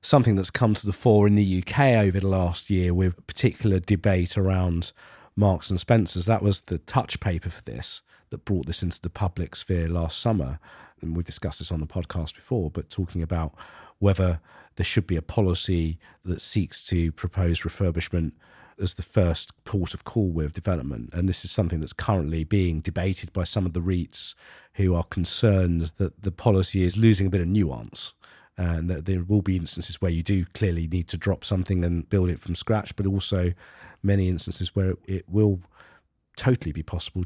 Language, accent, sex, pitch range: English, British, male, 90-105 Hz